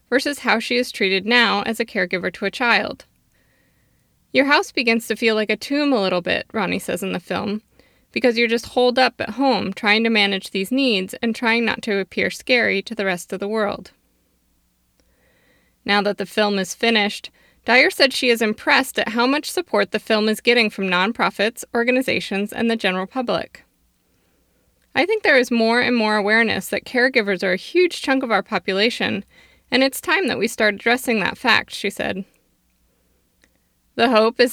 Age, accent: 20-39, American